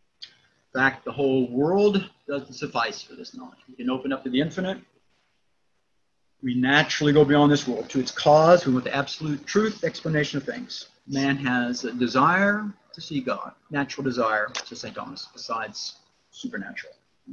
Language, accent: English, American